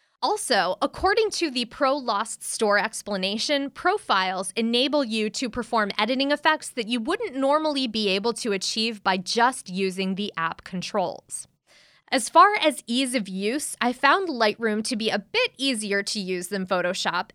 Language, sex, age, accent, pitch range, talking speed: English, female, 20-39, American, 195-265 Hz, 165 wpm